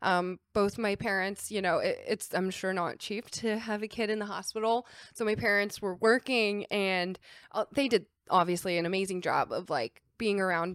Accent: American